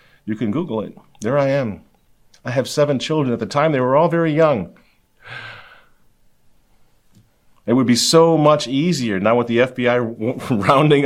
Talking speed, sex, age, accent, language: 165 wpm, male, 40-59, American, English